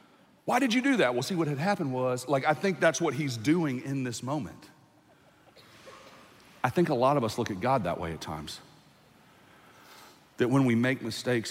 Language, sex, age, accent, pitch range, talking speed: English, male, 40-59, American, 105-135 Hz, 205 wpm